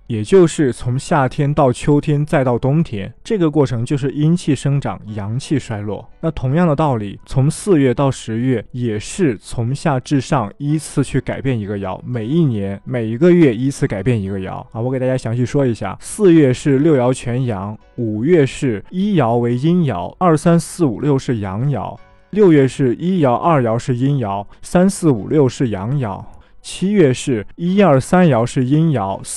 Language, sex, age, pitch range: Chinese, male, 20-39, 115-155 Hz